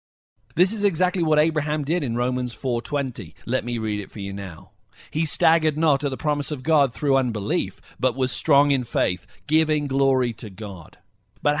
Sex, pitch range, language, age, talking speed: male, 120-155 Hz, English, 40-59, 185 wpm